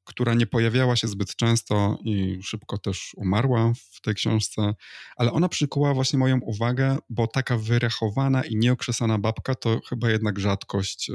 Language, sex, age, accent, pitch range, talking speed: Polish, male, 20-39, native, 105-125 Hz, 155 wpm